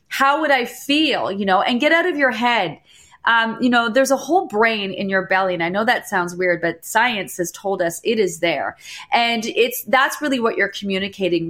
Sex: female